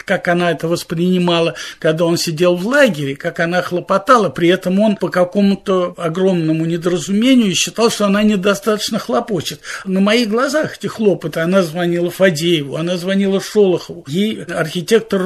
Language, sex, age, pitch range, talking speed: Russian, male, 50-69, 165-215 Hz, 145 wpm